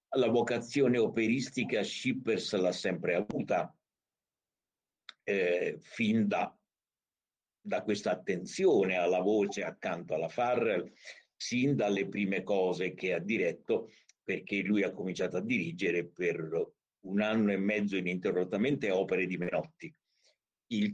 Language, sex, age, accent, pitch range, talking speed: Italian, male, 60-79, native, 95-120 Hz, 120 wpm